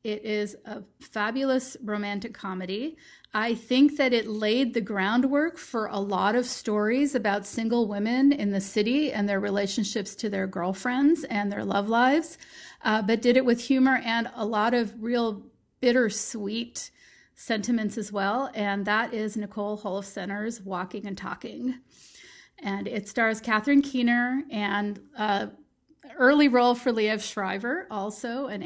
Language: English